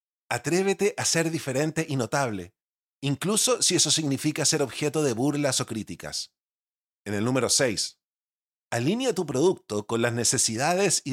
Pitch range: 110-155 Hz